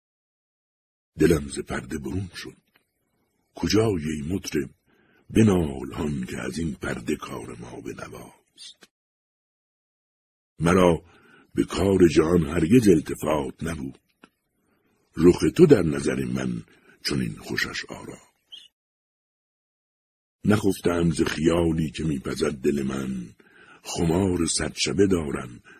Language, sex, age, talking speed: Persian, male, 60-79, 100 wpm